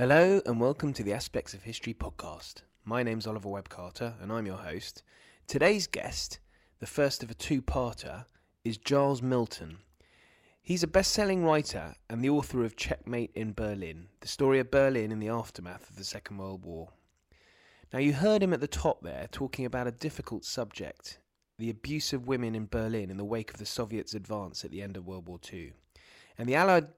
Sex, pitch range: male, 105-140 Hz